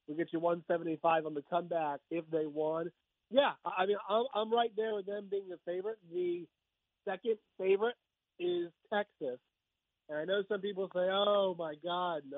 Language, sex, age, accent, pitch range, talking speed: English, male, 40-59, American, 165-205 Hz, 170 wpm